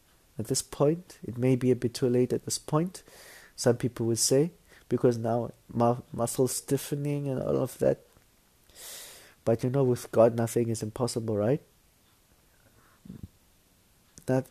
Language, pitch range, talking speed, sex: English, 110-130 Hz, 145 wpm, male